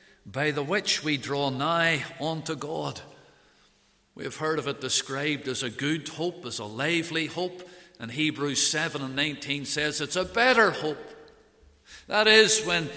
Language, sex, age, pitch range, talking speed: English, male, 50-69, 150-200 Hz, 160 wpm